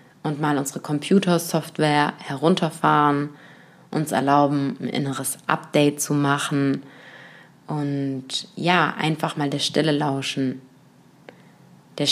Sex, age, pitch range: female, 20-39, 145-165 Hz